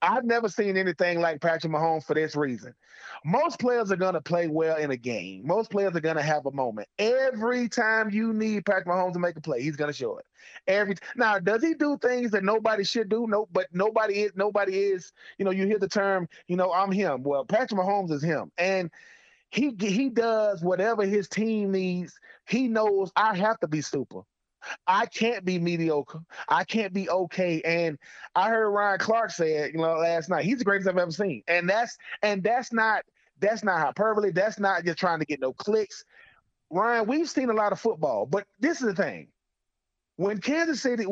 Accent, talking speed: American, 215 wpm